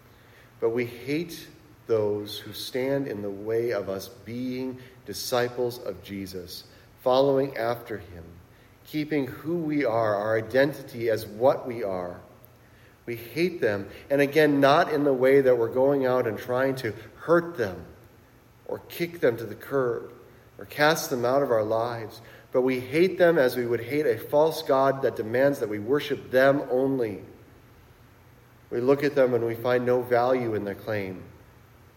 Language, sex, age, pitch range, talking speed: English, male, 40-59, 110-135 Hz, 165 wpm